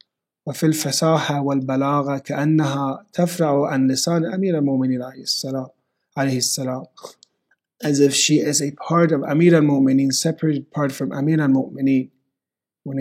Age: 30-49